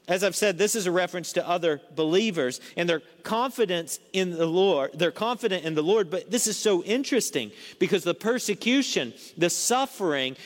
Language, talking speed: English, 180 wpm